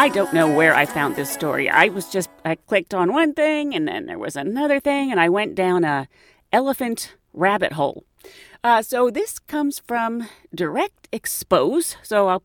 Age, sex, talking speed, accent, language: 40-59, female, 190 wpm, American, English